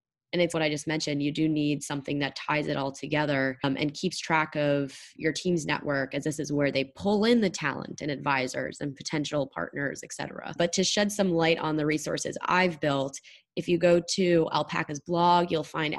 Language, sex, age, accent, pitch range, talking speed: English, female, 20-39, American, 145-170 Hz, 210 wpm